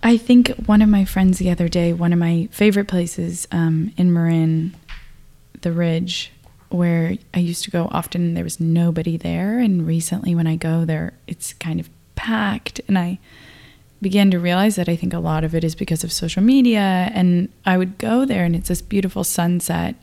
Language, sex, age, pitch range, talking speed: English, female, 20-39, 170-200 Hz, 200 wpm